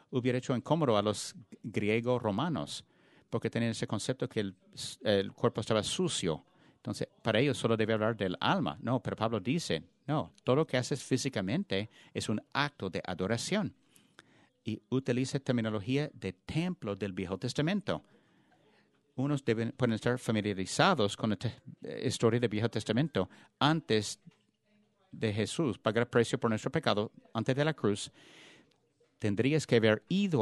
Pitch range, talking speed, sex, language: 110-150 Hz, 150 wpm, male, English